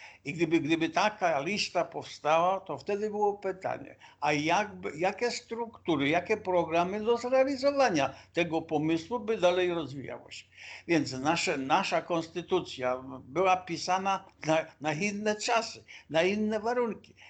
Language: Polish